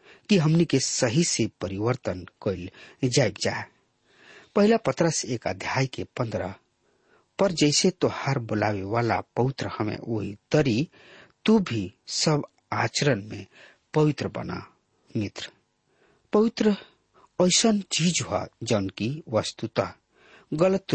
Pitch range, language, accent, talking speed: 105-165 Hz, English, Indian, 120 wpm